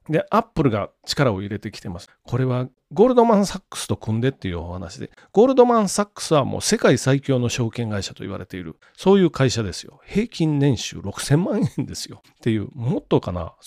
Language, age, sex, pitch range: Japanese, 40-59, male, 115-180 Hz